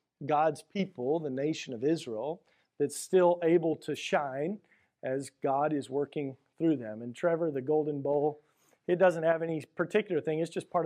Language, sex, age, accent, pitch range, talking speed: English, male, 40-59, American, 155-200 Hz, 170 wpm